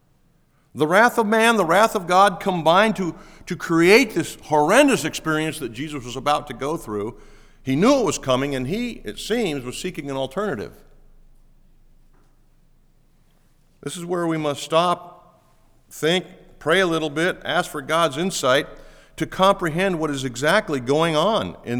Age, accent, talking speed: 50-69, American, 160 wpm